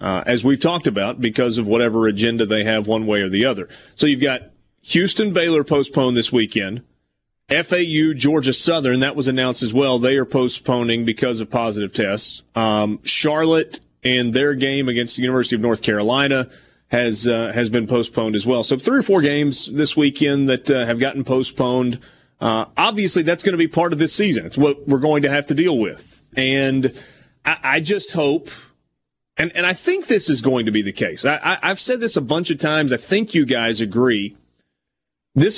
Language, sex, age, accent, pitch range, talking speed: English, male, 30-49, American, 115-150 Hz, 195 wpm